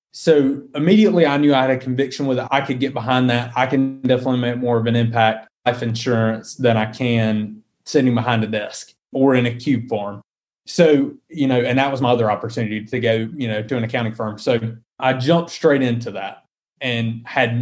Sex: male